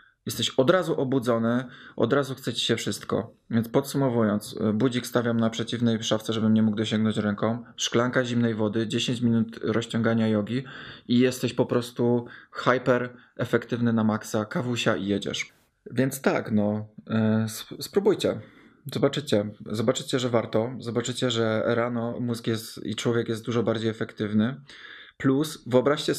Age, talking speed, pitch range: 20-39, 140 wpm, 110-125 Hz